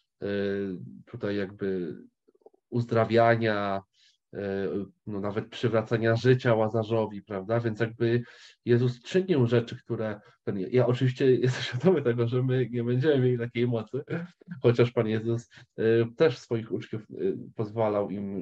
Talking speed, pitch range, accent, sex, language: 115 wpm, 100-135 Hz, native, male, Polish